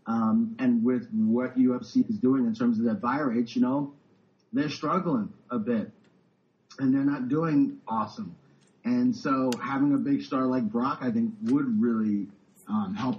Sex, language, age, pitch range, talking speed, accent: male, English, 30-49, 155-245 Hz, 175 wpm, American